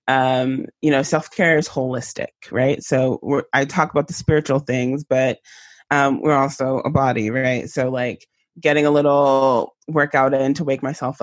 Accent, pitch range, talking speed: American, 130-150 Hz, 165 wpm